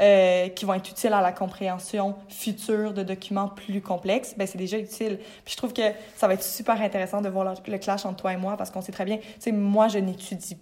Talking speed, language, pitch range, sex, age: 255 wpm, French, 190-215 Hz, female, 20-39